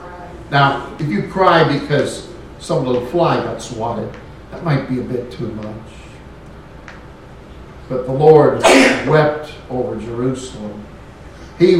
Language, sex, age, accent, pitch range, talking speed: English, male, 60-79, American, 125-165 Hz, 120 wpm